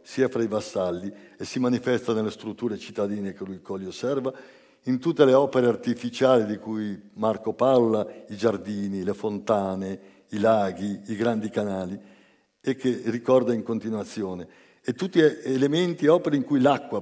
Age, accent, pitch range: 60-79, native, 105-135 Hz